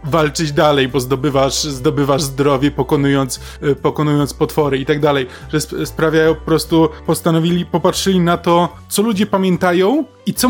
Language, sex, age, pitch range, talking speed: Polish, male, 20-39, 140-160 Hz, 135 wpm